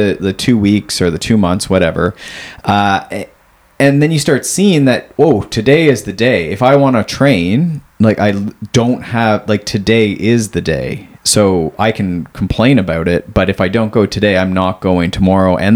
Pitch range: 95-115 Hz